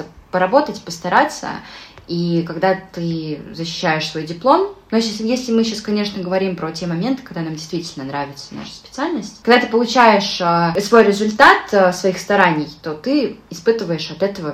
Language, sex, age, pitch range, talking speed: Russian, female, 20-39, 170-220 Hz, 145 wpm